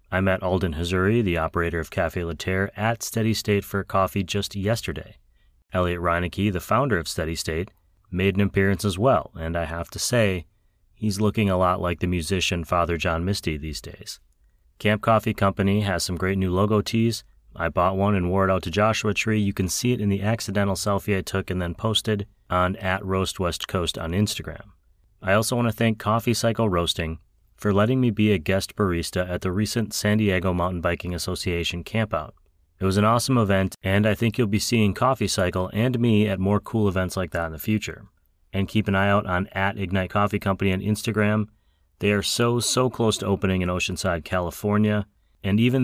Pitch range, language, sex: 90-105 Hz, English, male